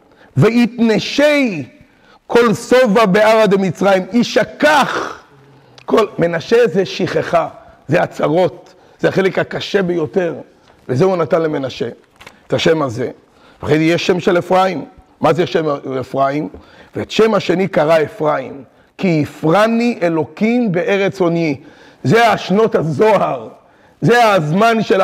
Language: Hebrew